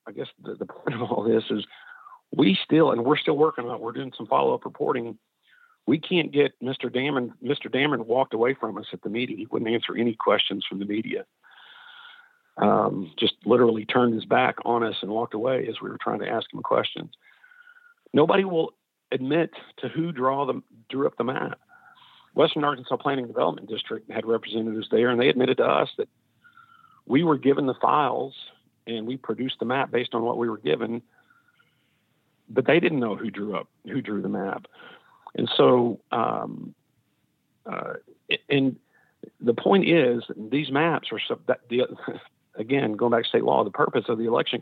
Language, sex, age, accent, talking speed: English, male, 50-69, American, 190 wpm